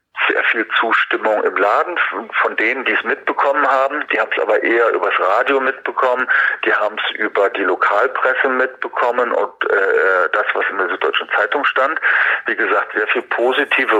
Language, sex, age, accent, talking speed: German, male, 40-59, German, 170 wpm